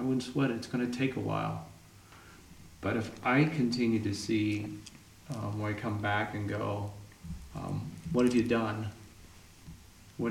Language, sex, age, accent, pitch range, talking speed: English, male, 40-59, American, 90-115 Hz, 170 wpm